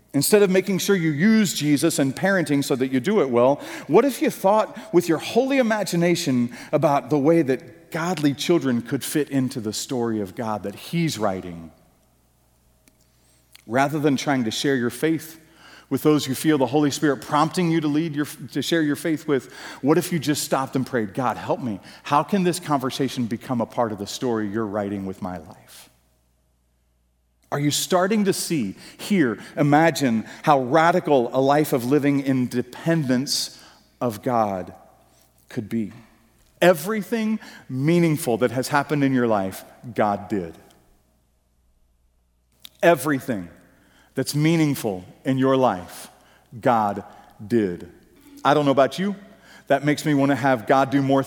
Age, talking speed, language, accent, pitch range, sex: 40-59, 160 wpm, English, American, 110-160 Hz, male